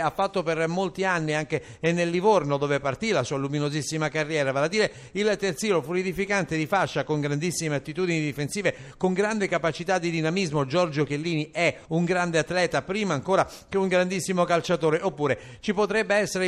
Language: Italian